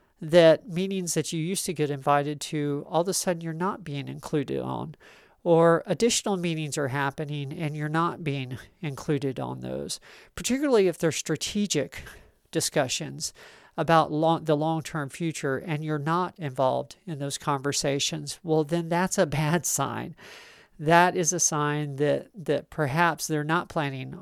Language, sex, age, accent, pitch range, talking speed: English, male, 40-59, American, 145-170 Hz, 155 wpm